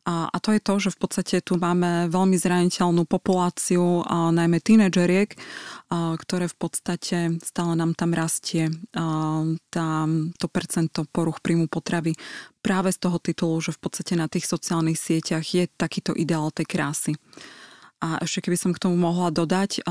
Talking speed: 155 wpm